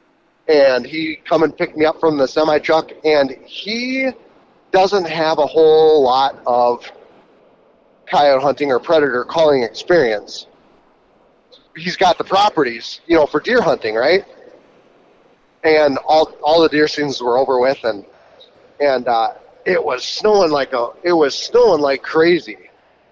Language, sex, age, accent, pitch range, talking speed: English, male, 30-49, American, 140-180 Hz, 150 wpm